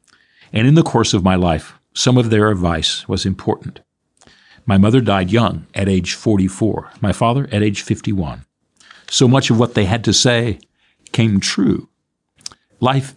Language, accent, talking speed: English, American, 165 wpm